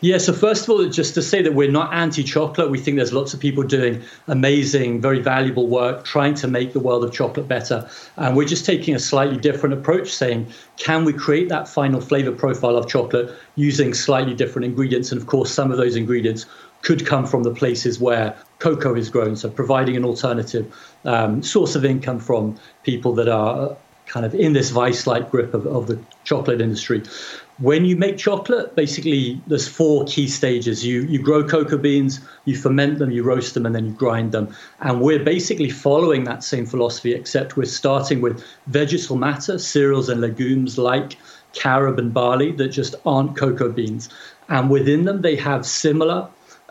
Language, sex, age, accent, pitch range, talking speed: English, male, 40-59, British, 125-145 Hz, 190 wpm